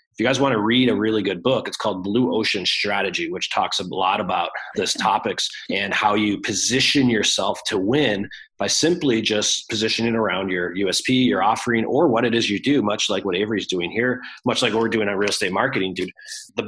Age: 30-49